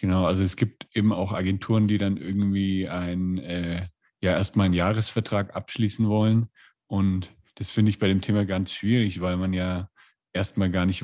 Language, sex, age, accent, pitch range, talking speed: German, male, 30-49, German, 90-100 Hz, 185 wpm